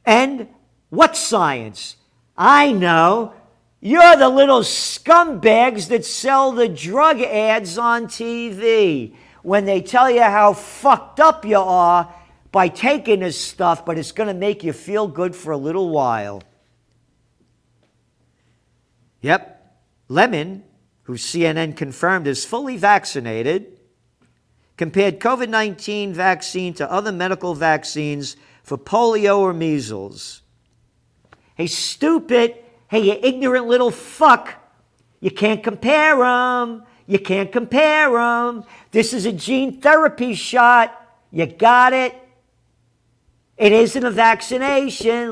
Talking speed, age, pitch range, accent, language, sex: 115 wpm, 50-69, 165-240 Hz, American, English, male